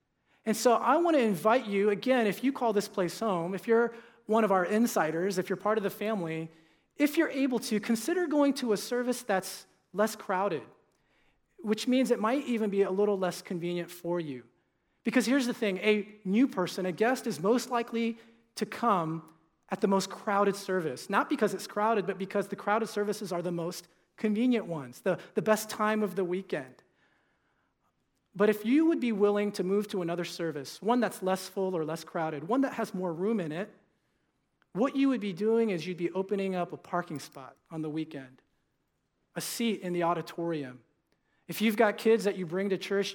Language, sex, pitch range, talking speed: English, male, 175-225 Hz, 200 wpm